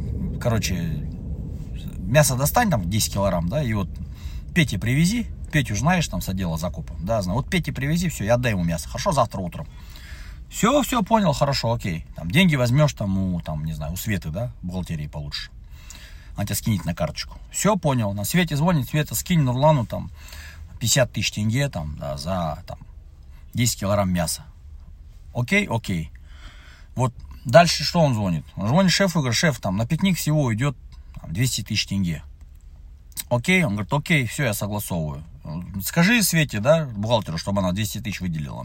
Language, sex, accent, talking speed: Russian, male, native, 165 wpm